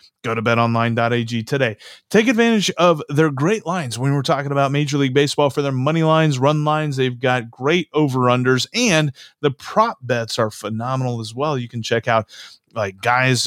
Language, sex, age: English, male, 30-49